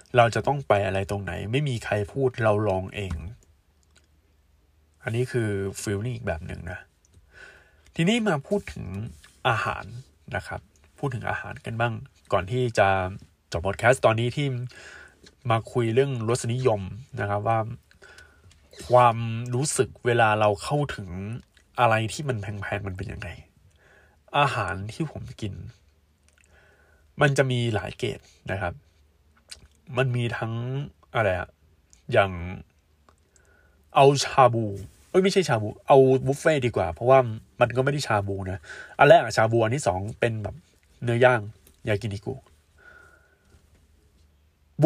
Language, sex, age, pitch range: Thai, male, 20-39, 85-125 Hz